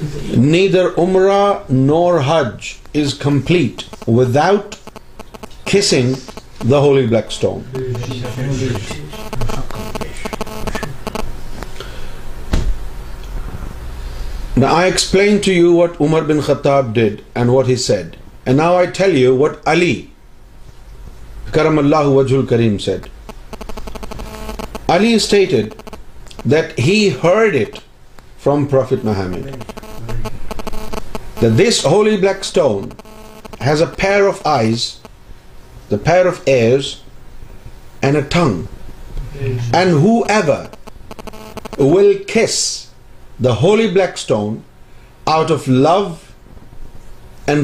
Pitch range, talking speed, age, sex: 120-180 Hz, 95 wpm, 50-69, male